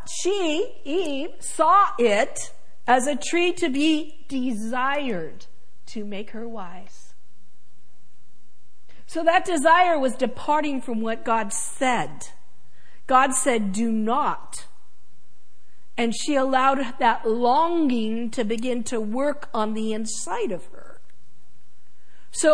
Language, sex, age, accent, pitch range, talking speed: English, female, 50-69, American, 240-325 Hz, 110 wpm